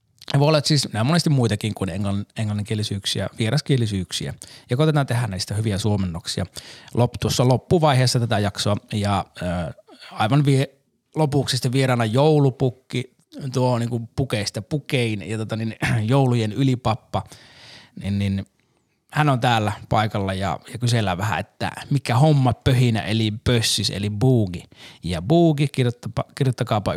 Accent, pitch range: native, 105-135 Hz